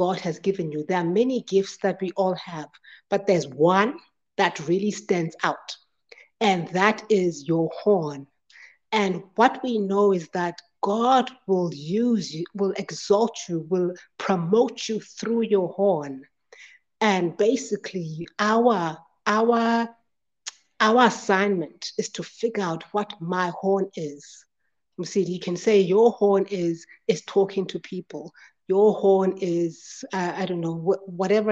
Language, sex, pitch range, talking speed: English, female, 175-215 Hz, 145 wpm